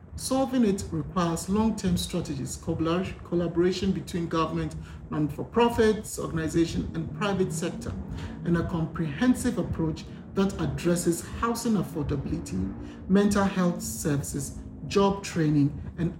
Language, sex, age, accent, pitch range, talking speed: English, male, 50-69, Nigerian, 145-200 Hz, 100 wpm